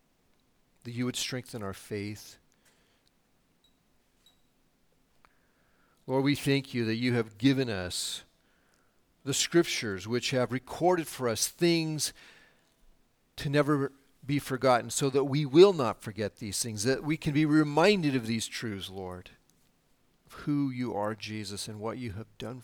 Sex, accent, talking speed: male, American, 145 wpm